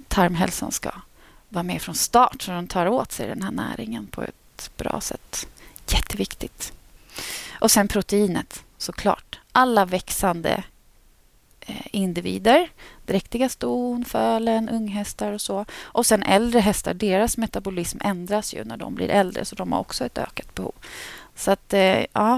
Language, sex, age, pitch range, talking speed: Swedish, female, 30-49, 185-235 Hz, 145 wpm